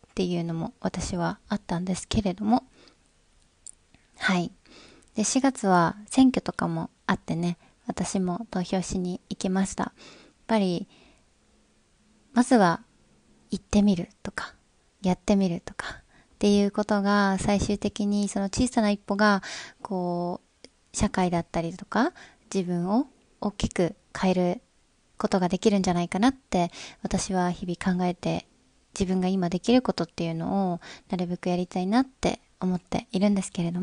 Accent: native